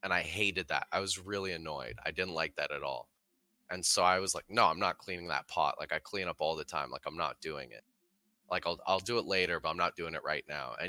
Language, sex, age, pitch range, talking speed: English, male, 20-39, 85-120 Hz, 280 wpm